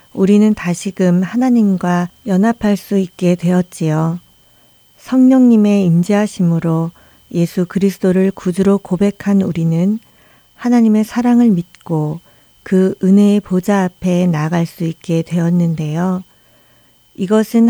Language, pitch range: Korean, 175-210 Hz